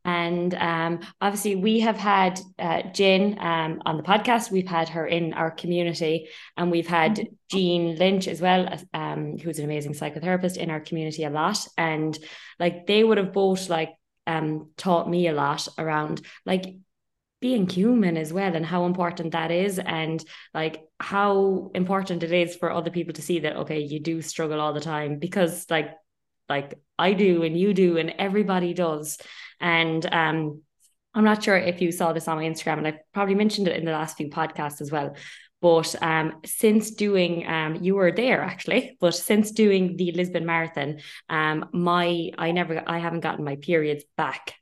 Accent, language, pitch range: Irish, English, 160-185 Hz